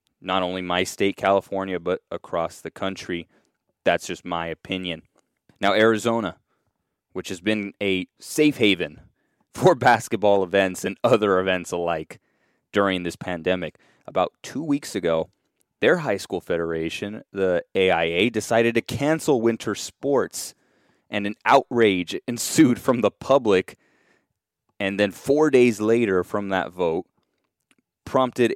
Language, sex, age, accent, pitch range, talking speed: English, male, 20-39, American, 90-115 Hz, 130 wpm